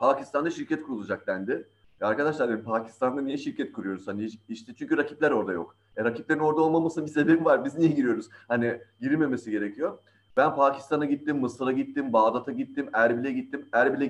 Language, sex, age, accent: Turkish, male, 30-49, native